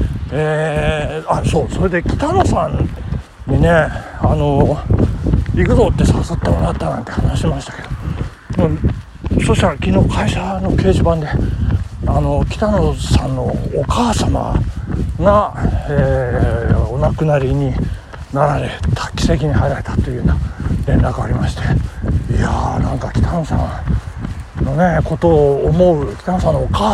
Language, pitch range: Japanese, 105-165 Hz